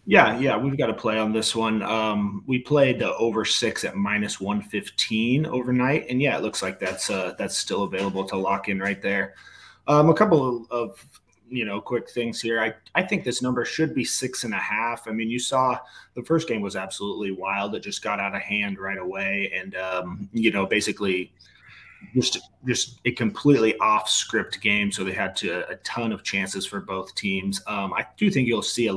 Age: 30-49